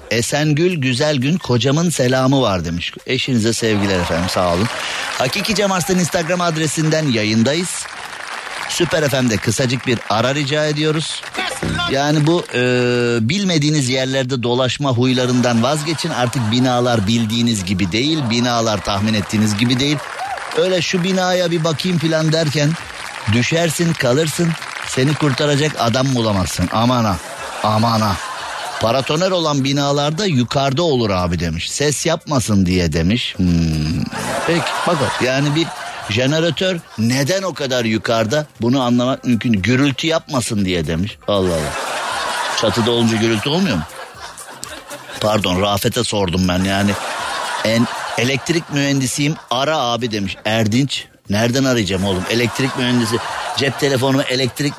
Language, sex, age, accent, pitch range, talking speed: Turkish, male, 50-69, native, 115-150 Hz, 125 wpm